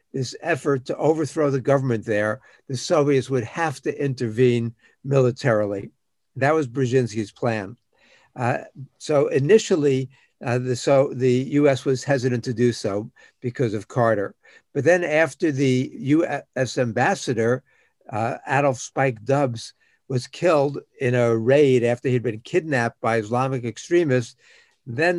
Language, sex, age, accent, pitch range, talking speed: English, male, 60-79, American, 115-140 Hz, 135 wpm